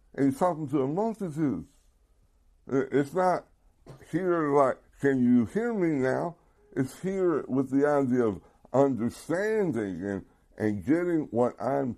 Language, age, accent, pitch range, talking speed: English, 60-79, American, 105-155 Hz, 135 wpm